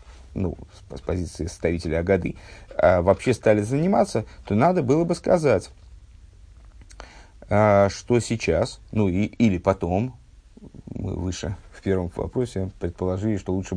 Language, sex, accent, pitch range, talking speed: Russian, male, native, 85-115 Hz, 115 wpm